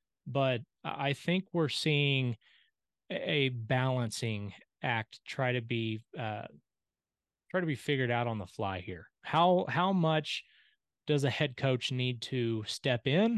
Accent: American